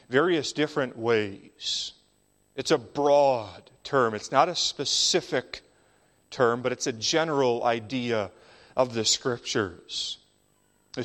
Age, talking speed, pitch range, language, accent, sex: 40-59, 115 wpm, 120-150 Hz, English, American, male